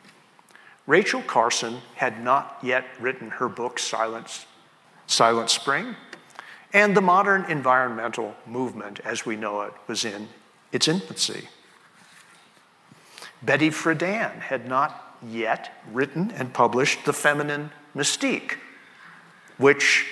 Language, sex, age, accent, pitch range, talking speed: English, male, 50-69, American, 120-175 Hz, 105 wpm